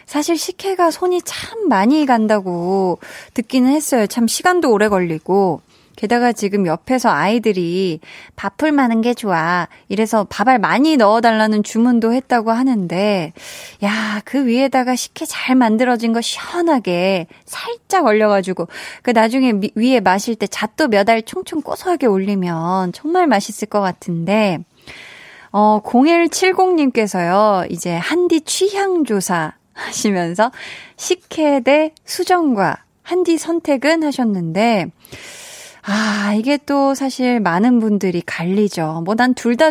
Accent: native